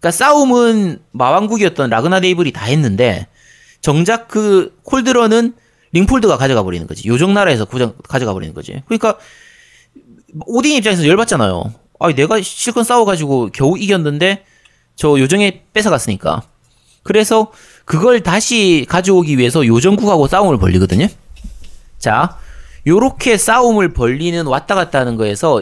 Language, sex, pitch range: Korean, male, 120-205 Hz